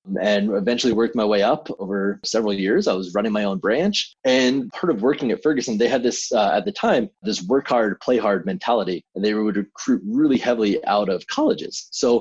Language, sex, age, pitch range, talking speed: English, male, 30-49, 100-125 Hz, 215 wpm